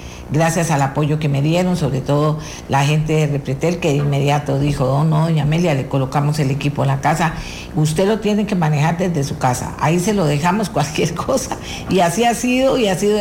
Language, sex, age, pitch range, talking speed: Spanish, female, 50-69, 145-185 Hz, 215 wpm